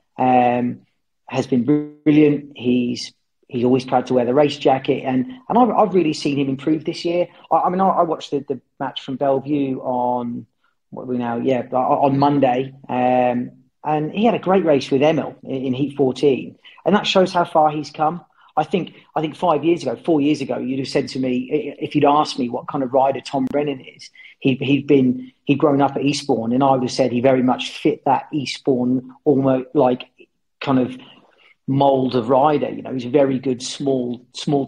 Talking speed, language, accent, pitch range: 215 wpm, English, British, 130-150 Hz